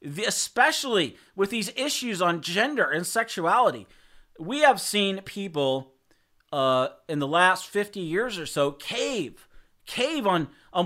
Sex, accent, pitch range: male, American, 185-255 Hz